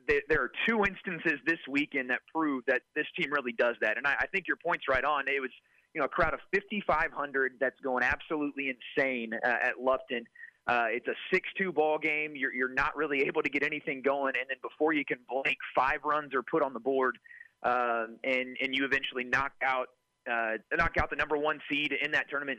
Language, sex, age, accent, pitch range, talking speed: English, male, 30-49, American, 130-170 Hz, 215 wpm